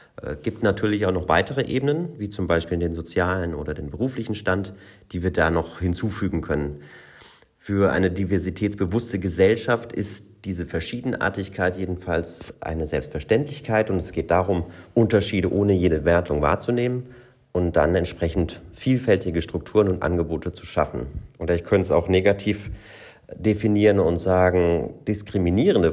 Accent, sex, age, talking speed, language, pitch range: German, male, 30-49, 140 wpm, German, 85-105 Hz